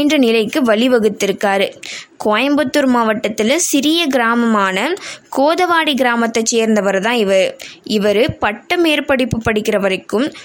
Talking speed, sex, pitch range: 80 wpm, female, 220-295 Hz